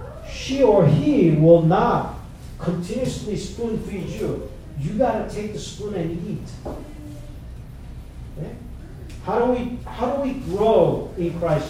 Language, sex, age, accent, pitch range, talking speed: English, male, 40-59, American, 145-200 Hz, 140 wpm